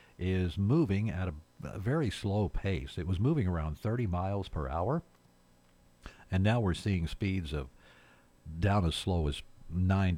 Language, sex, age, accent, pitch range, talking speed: English, male, 50-69, American, 80-105 Hz, 160 wpm